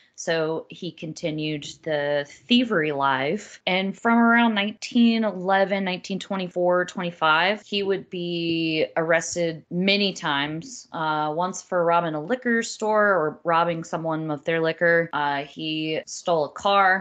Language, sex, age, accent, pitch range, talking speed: English, female, 20-39, American, 160-195 Hz, 125 wpm